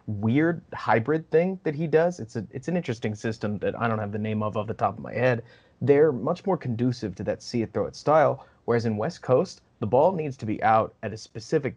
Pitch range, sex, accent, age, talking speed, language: 110-140 Hz, male, American, 30-49, 250 wpm, English